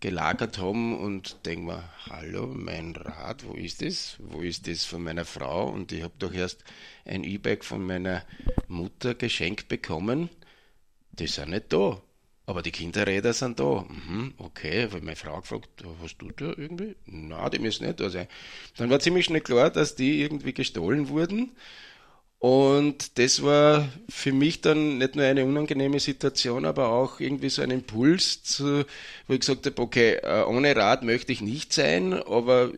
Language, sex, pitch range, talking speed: German, male, 95-135 Hz, 175 wpm